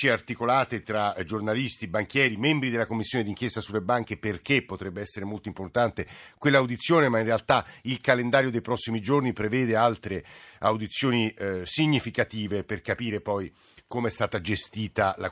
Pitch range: 105-125 Hz